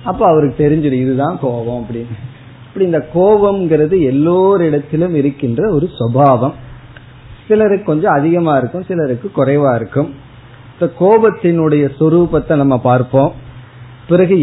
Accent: native